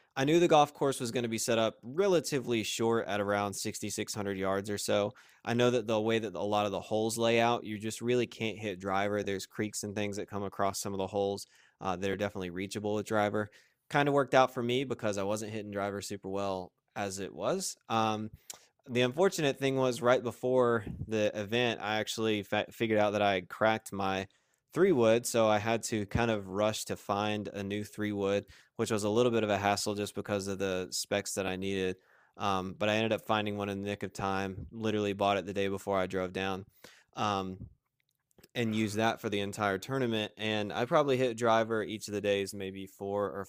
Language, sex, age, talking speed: English, male, 20-39, 225 wpm